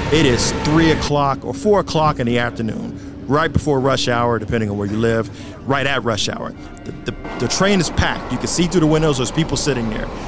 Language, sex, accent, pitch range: English, male, American, 120-155 Hz